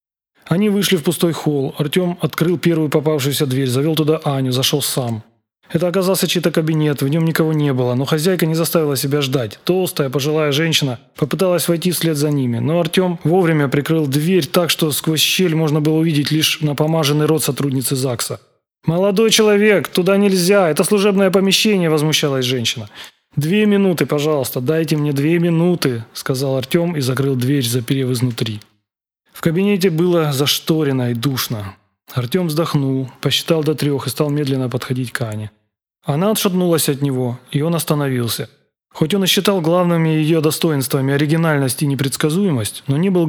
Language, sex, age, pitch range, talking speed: Russian, male, 20-39, 135-170 Hz, 160 wpm